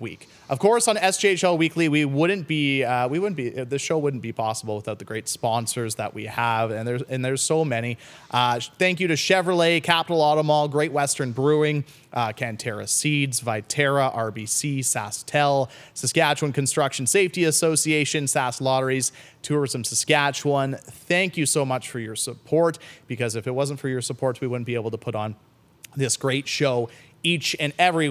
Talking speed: 175 wpm